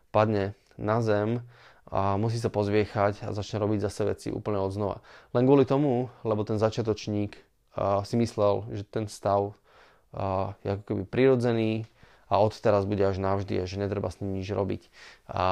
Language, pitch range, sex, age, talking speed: Slovak, 105-120 Hz, male, 20-39, 175 wpm